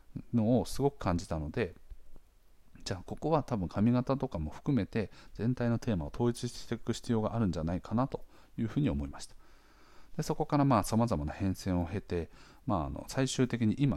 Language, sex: Japanese, male